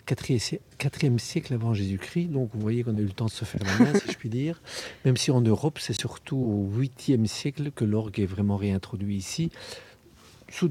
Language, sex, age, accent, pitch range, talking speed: French, male, 50-69, French, 100-130 Hz, 205 wpm